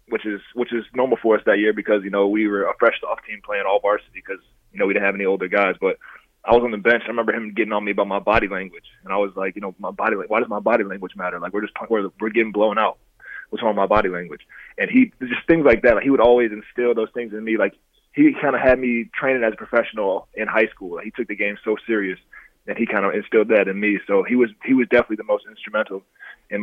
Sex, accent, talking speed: male, American, 290 wpm